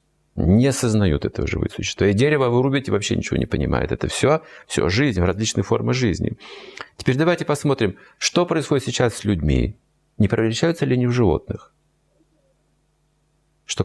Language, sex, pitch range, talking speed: Russian, male, 80-115 Hz, 145 wpm